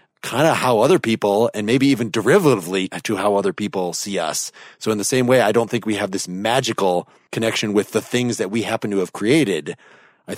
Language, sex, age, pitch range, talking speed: English, male, 30-49, 100-130 Hz, 220 wpm